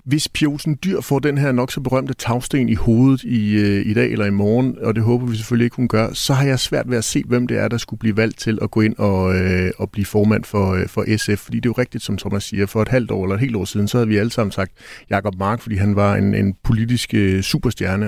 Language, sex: Danish, male